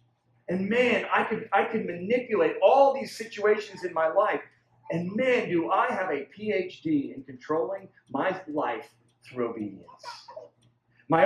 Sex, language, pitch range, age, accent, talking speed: male, English, 120-190 Hz, 50-69, American, 150 wpm